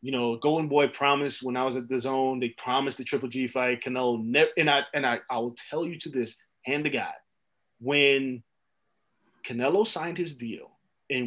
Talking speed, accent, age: 200 wpm, American, 30-49